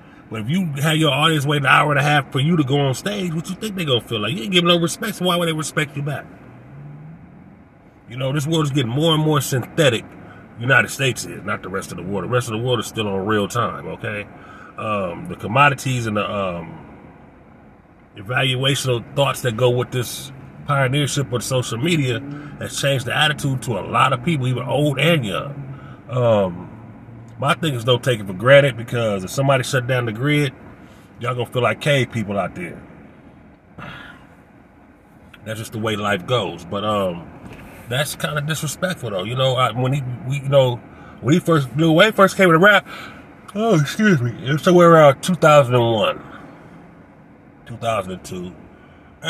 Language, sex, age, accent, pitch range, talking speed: English, male, 30-49, American, 115-155 Hz, 195 wpm